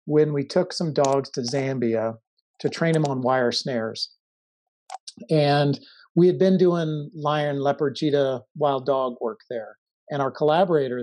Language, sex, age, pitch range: English, male, 40-59, 125-155 Hz